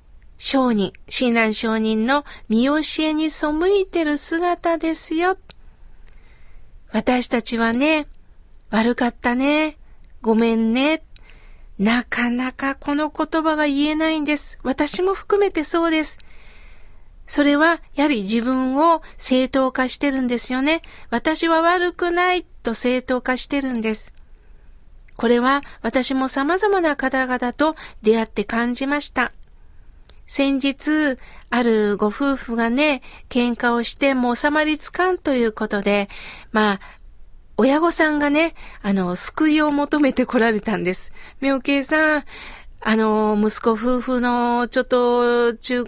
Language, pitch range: Japanese, 230-300 Hz